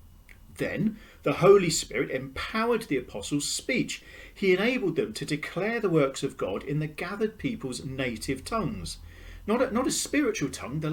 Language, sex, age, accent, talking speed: English, male, 40-59, British, 160 wpm